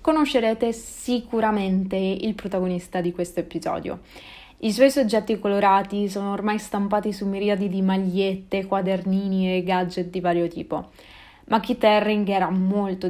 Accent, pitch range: native, 185-220 Hz